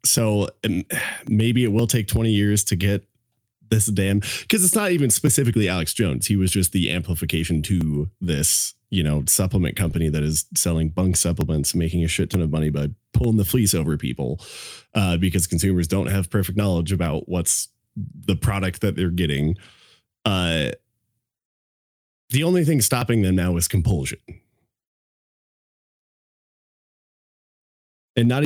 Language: English